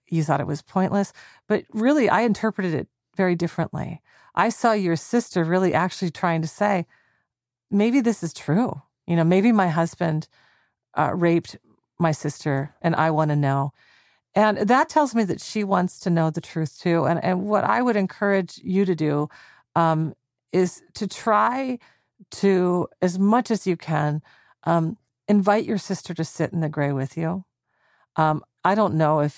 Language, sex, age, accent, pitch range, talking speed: English, female, 40-59, American, 155-190 Hz, 175 wpm